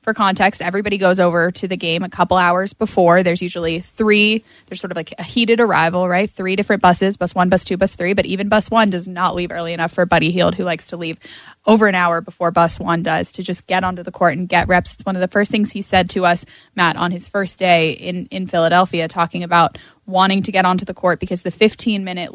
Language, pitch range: English, 175-195 Hz